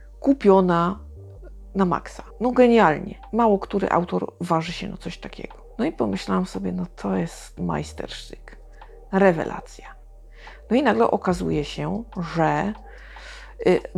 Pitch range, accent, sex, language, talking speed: 160-200 Hz, native, female, Polish, 125 wpm